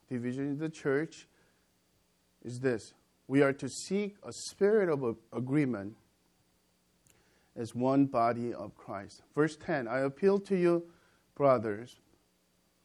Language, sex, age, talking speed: English, male, 50-69, 120 wpm